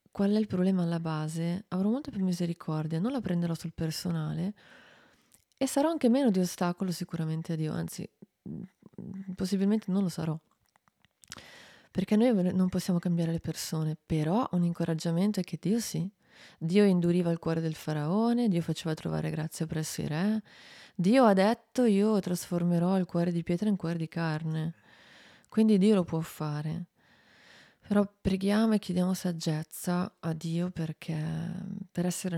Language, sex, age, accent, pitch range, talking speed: Italian, female, 20-39, native, 165-195 Hz, 155 wpm